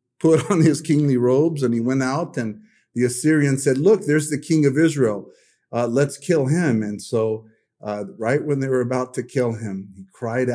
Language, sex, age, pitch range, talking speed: English, male, 40-59, 120-155 Hz, 205 wpm